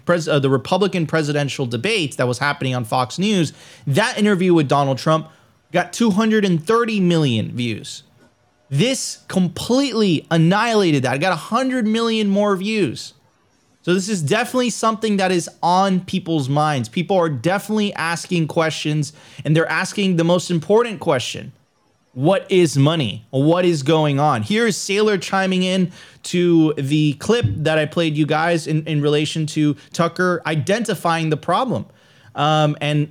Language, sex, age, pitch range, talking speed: English, male, 20-39, 145-190 Hz, 145 wpm